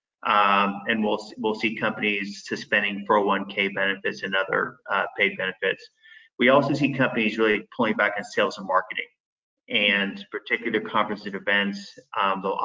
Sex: male